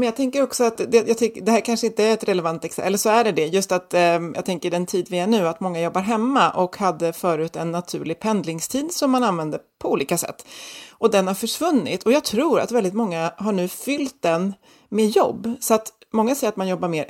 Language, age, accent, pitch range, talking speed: Swedish, 30-49, native, 185-235 Hz, 240 wpm